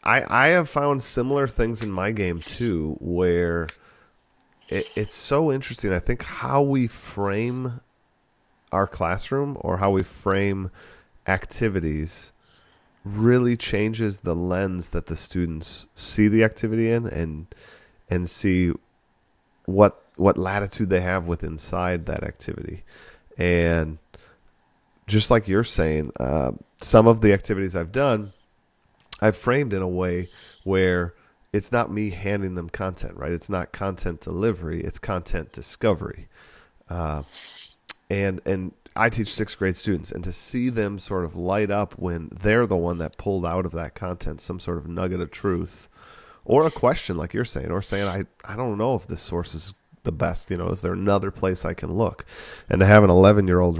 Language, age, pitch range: English, 30-49, 85-105 Hz